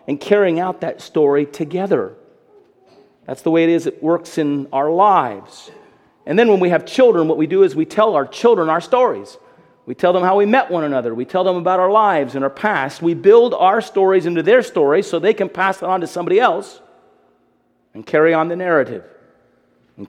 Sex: male